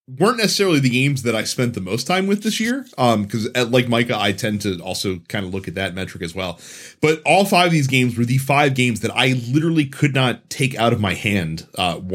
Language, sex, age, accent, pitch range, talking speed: English, male, 30-49, American, 115-155 Hz, 245 wpm